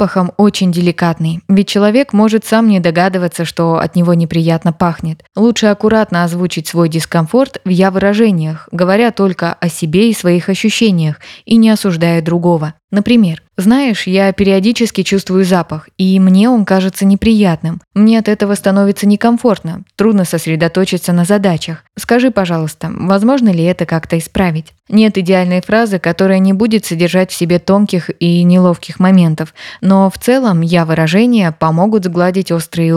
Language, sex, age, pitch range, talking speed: Russian, female, 20-39, 175-215 Hz, 145 wpm